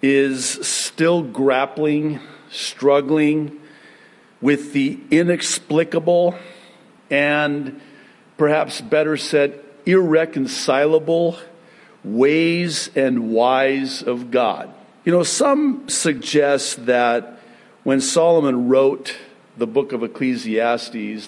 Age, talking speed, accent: 50-69, 80 wpm, American